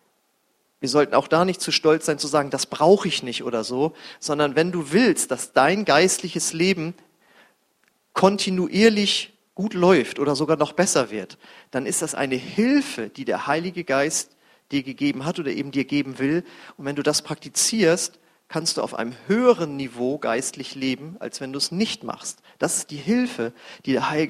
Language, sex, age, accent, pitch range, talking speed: German, male, 40-59, German, 140-175 Hz, 185 wpm